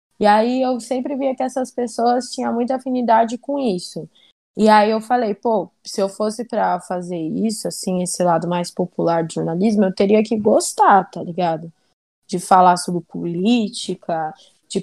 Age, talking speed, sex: 10-29, 170 wpm, female